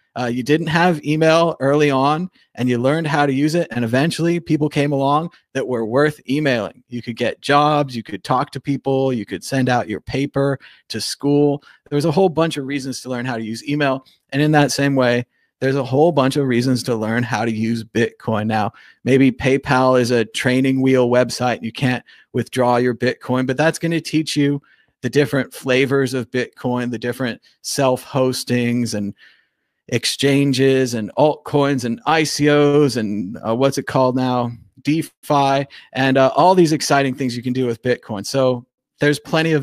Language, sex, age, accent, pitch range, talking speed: English, male, 30-49, American, 120-145 Hz, 190 wpm